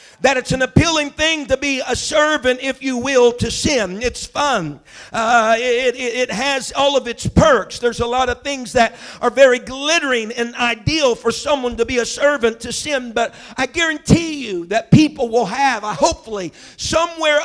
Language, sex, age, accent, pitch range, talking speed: English, male, 50-69, American, 235-285 Hz, 190 wpm